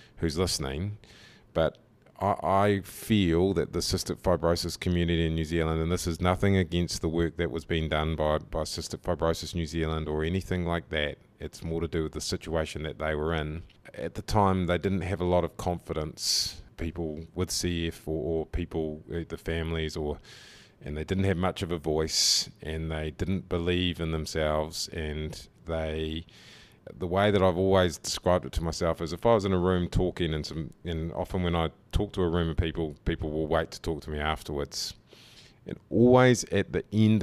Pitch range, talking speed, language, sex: 80-95 Hz, 200 wpm, English, male